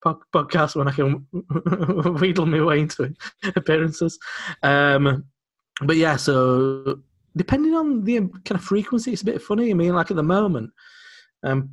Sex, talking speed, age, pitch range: male, 155 wpm, 20-39, 130-185 Hz